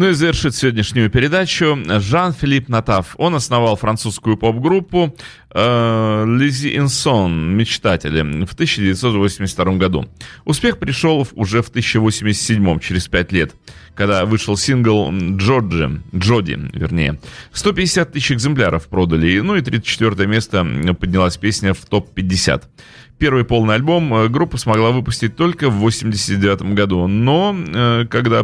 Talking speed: 115 wpm